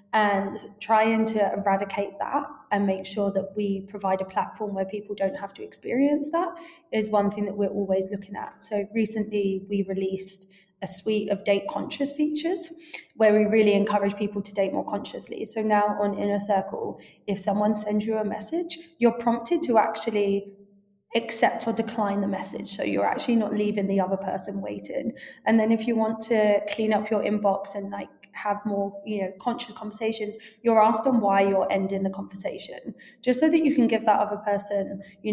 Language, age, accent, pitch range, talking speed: English, 20-39, British, 200-220 Hz, 190 wpm